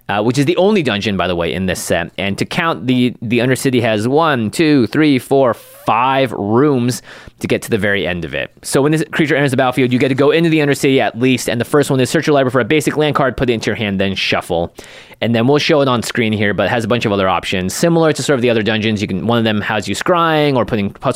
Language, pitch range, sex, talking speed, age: English, 110-145 Hz, male, 290 wpm, 30-49